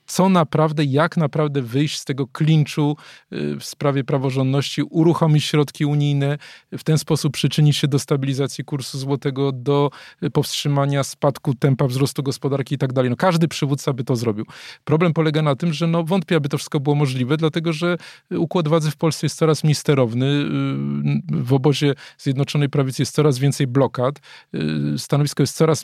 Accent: native